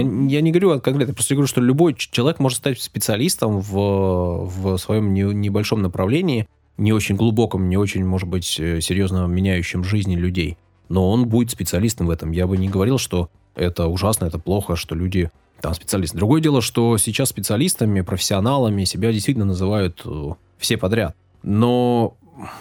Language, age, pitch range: Russian, 20-39, 95-115 Hz